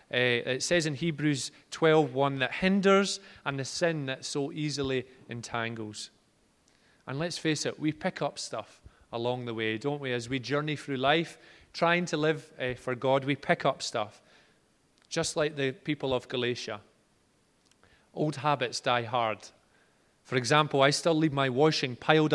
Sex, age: male, 30-49